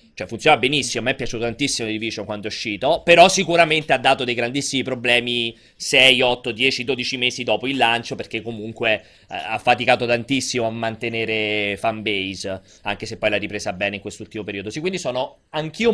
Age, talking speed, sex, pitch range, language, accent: 20-39, 190 wpm, male, 115-155 Hz, Italian, native